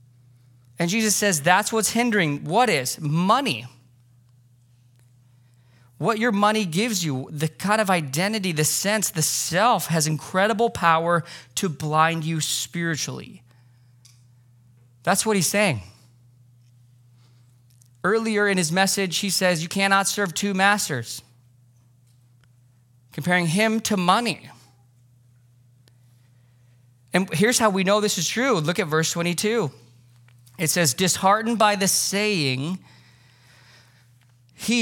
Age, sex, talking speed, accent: 20-39, male, 115 wpm, American